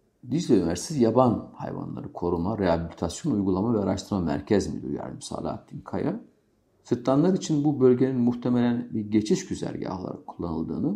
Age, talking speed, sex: 50-69, 130 wpm, male